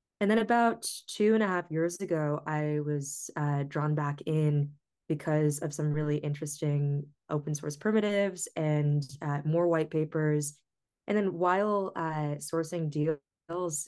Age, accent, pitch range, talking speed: 20-39, American, 145-165 Hz, 145 wpm